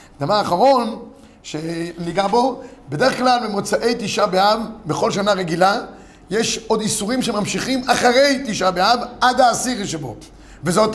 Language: Hebrew